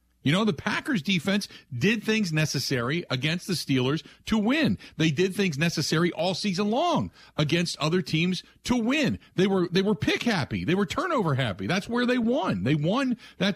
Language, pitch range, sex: English, 160-230 Hz, male